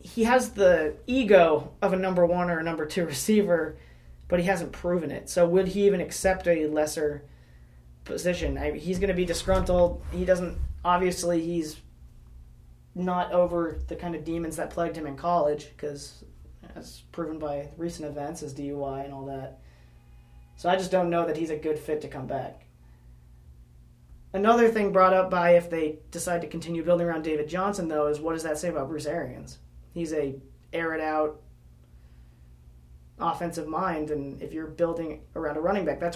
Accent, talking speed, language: American, 180 wpm, English